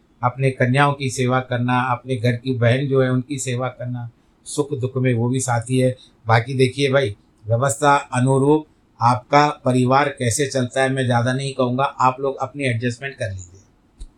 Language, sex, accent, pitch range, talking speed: Hindi, male, native, 120-155 Hz, 175 wpm